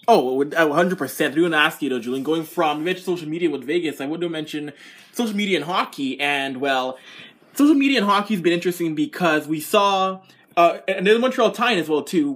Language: English